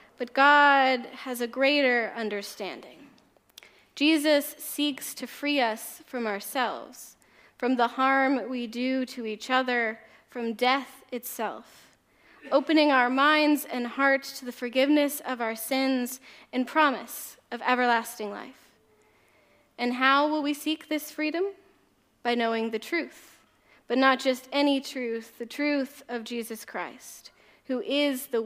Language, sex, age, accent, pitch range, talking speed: English, female, 10-29, American, 235-280 Hz, 135 wpm